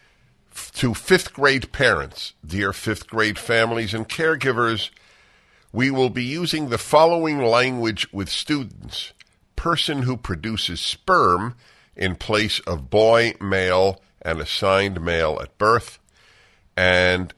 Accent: American